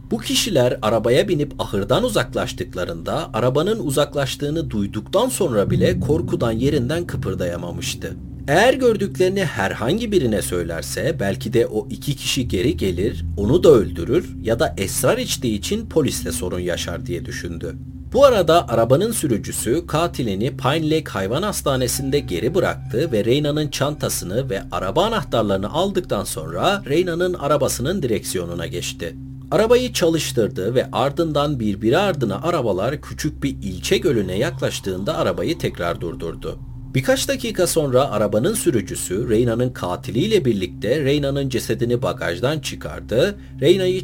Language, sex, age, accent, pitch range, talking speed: Turkish, male, 40-59, native, 95-155 Hz, 125 wpm